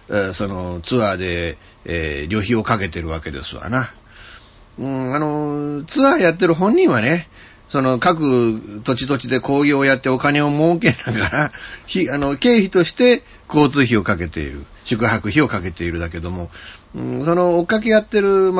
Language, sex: Japanese, male